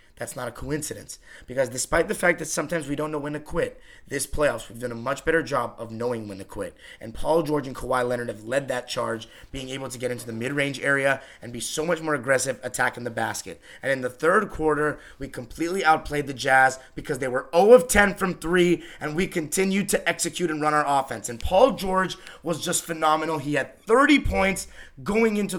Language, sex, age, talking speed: English, male, 30-49, 225 wpm